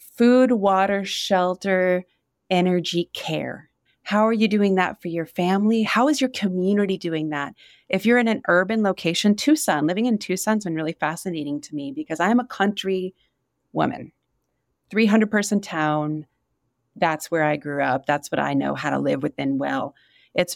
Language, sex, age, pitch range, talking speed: English, female, 30-49, 160-210 Hz, 165 wpm